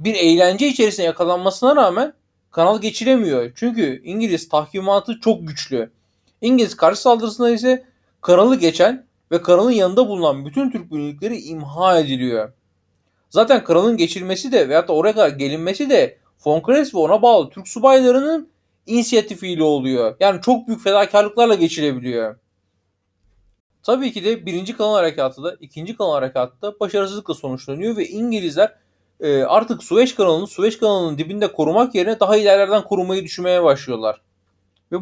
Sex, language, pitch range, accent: male, Turkish, 150-230 Hz, native